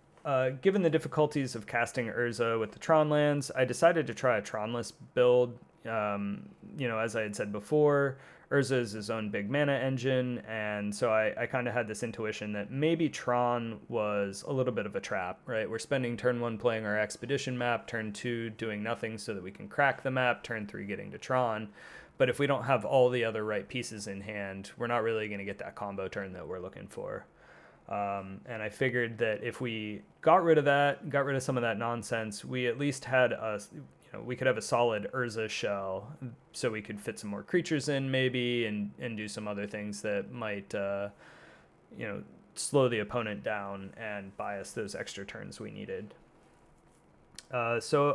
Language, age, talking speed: English, 30-49, 210 wpm